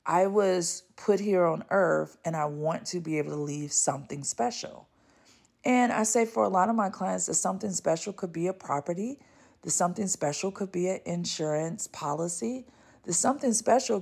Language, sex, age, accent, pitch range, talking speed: English, female, 40-59, American, 155-215 Hz, 185 wpm